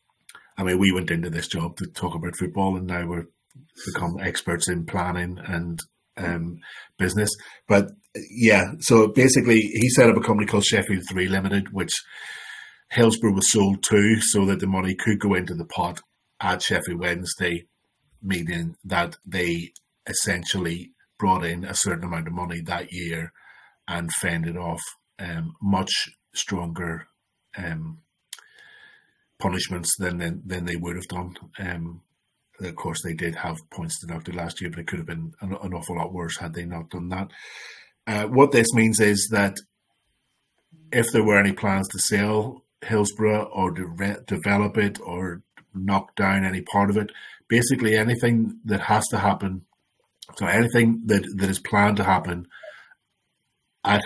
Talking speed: 160 wpm